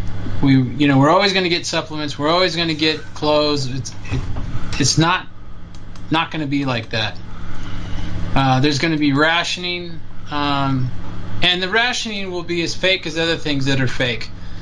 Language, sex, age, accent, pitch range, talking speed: English, male, 20-39, American, 100-165 Hz, 185 wpm